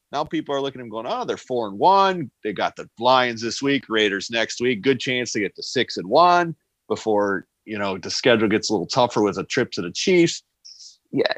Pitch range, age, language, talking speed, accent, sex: 105-160 Hz, 40-59, English, 235 wpm, American, male